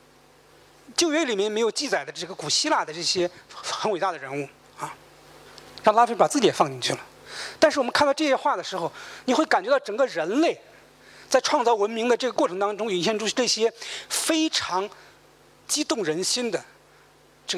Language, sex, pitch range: Chinese, male, 195-290 Hz